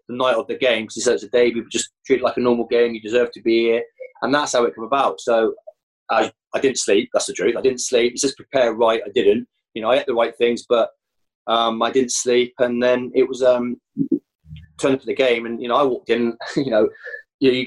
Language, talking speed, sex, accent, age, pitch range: English, 260 wpm, male, British, 20-39, 115-140 Hz